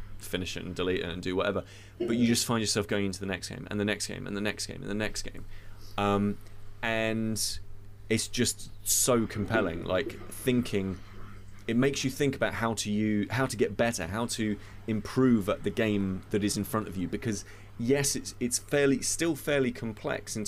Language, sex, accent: English, male, British